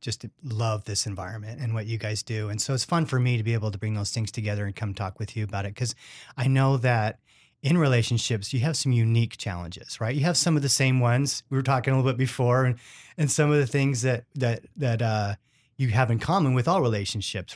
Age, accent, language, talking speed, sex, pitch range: 30-49, American, English, 255 wpm, male, 110-130 Hz